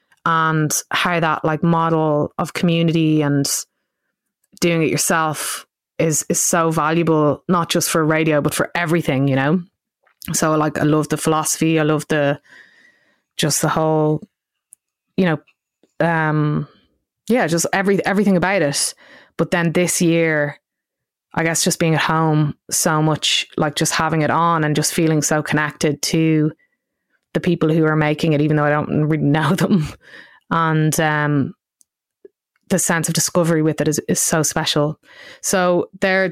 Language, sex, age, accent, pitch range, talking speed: English, female, 20-39, Irish, 155-185 Hz, 155 wpm